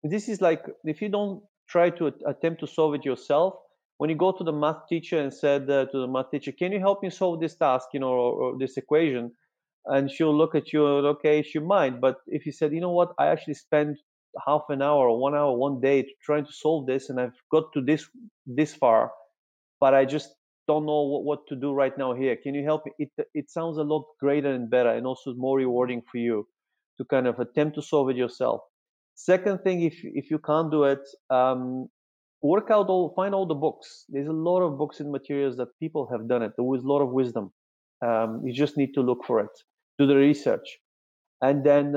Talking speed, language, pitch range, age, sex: 235 wpm, English, 130-155 Hz, 30-49, male